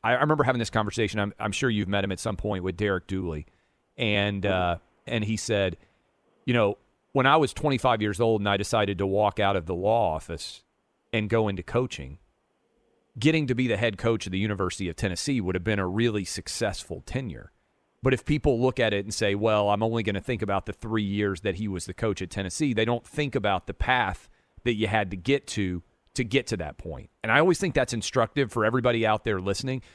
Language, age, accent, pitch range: English, 40-59, American, 100-130 Hz